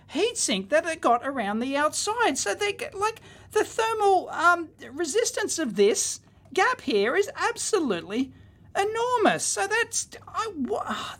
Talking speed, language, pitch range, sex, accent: 140 wpm, English, 215-360 Hz, male, Australian